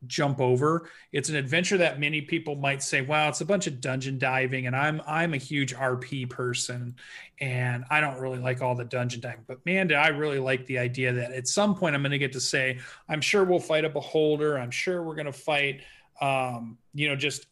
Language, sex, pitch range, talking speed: English, male, 125-155 Hz, 230 wpm